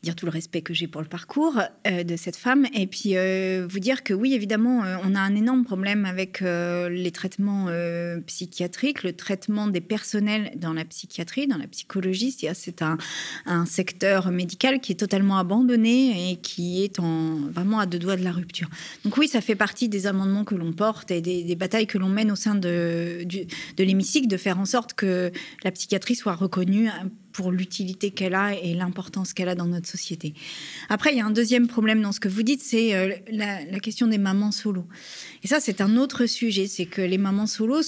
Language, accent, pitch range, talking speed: French, French, 180-220 Hz, 220 wpm